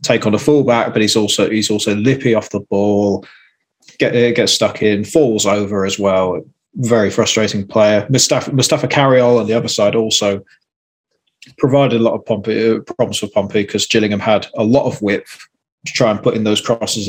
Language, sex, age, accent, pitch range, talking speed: English, male, 20-39, British, 105-125 Hz, 190 wpm